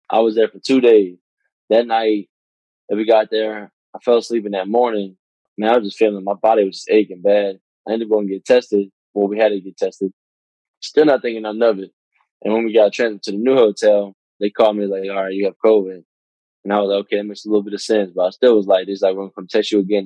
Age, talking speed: 20-39, 280 wpm